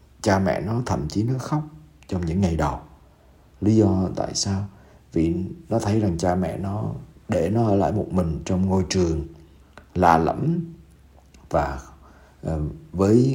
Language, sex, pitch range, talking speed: Vietnamese, male, 80-110 Hz, 155 wpm